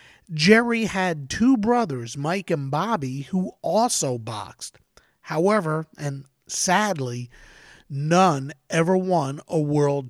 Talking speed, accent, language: 105 wpm, American, English